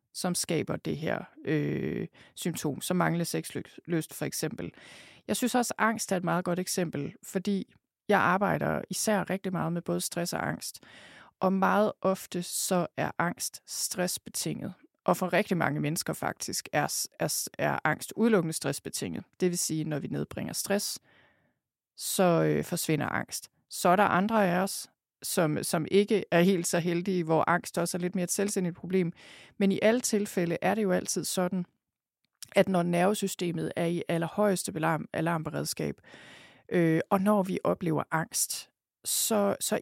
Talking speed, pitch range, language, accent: 160 wpm, 170-200 Hz, Danish, native